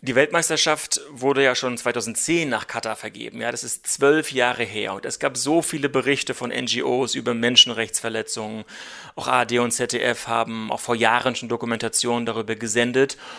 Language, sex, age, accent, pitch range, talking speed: German, male, 30-49, German, 120-145 Hz, 165 wpm